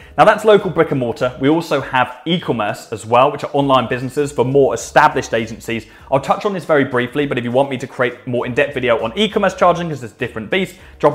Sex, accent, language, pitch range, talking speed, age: male, British, English, 115-150 Hz, 240 wpm, 20-39